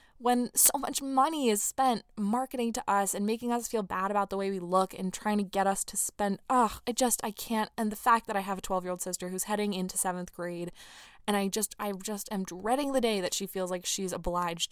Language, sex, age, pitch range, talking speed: English, female, 20-39, 180-220 Hz, 245 wpm